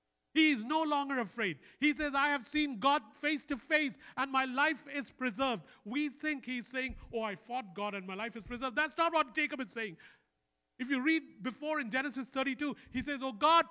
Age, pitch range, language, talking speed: 50-69, 225-305 Hz, English, 215 wpm